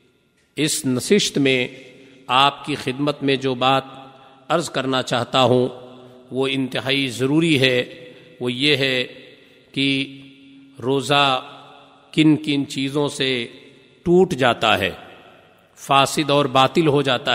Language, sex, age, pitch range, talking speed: Urdu, male, 50-69, 135-160 Hz, 120 wpm